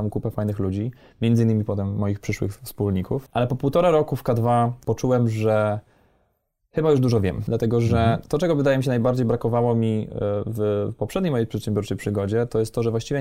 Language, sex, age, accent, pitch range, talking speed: Polish, male, 20-39, native, 105-120 Hz, 185 wpm